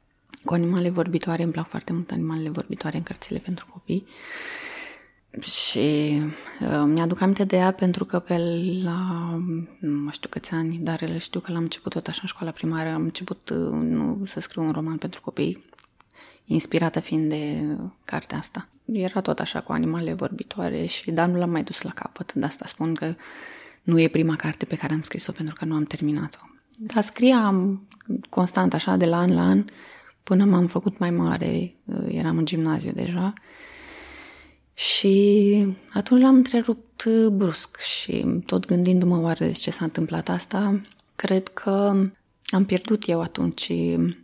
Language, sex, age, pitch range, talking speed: Romanian, female, 20-39, 160-195 Hz, 160 wpm